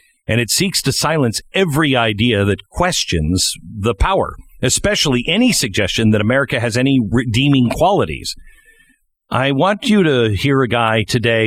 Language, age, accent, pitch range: English, 50-69, American, 105-140 Hz